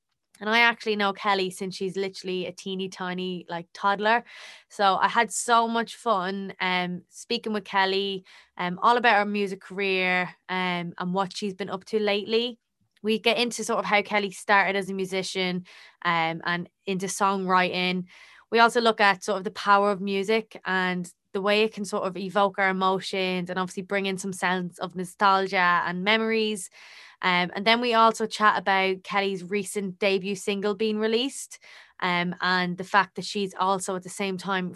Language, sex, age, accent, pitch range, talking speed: English, female, 20-39, Irish, 180-205 Hz, 185 wpm